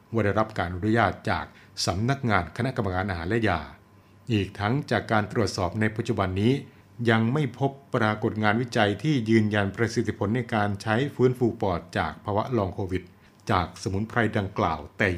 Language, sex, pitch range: Thai, male, 95-115 Hz